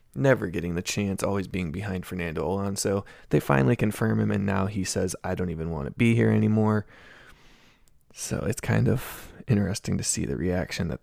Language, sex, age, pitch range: English, male, 20-39, 95-115 Hz